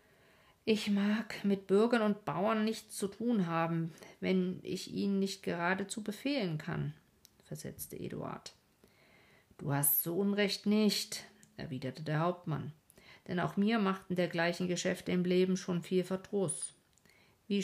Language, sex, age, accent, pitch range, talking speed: German, female, 50-69, German, 150-195 Hz, 135 wpm